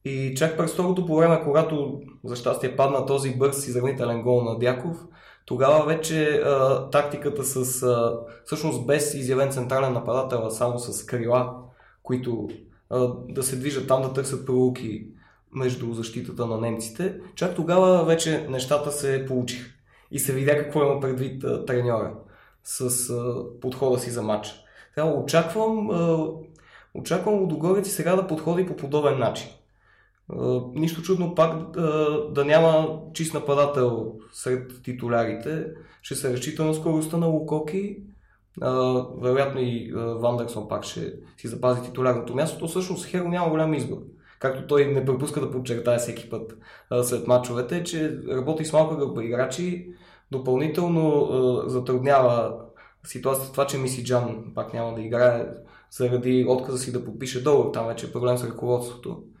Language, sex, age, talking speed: Bulgarian, male, 20-39, 150 wpm